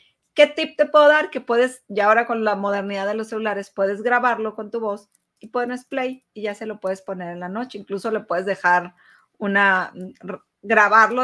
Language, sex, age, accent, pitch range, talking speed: Spanish, female, 40-59, Mexican, 195-235 Hz, 205 wpm